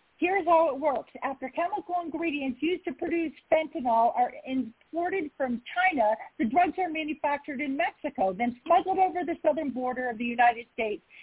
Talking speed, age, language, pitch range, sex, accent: 165 wpm, 40-59, English, 255-355 Hz, female, American